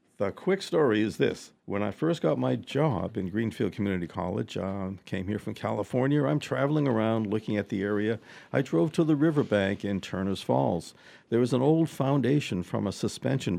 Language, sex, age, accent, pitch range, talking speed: English, male, 60-79, American, 95-125 Hz, 190 wpm